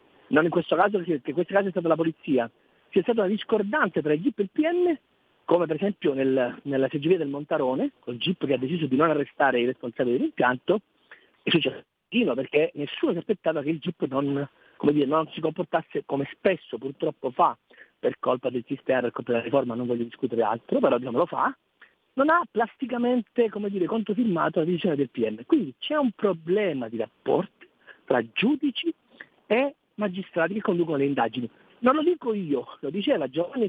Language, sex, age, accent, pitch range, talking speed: Italian, male, 40-59, native, 145-225 Hz, 190 wpm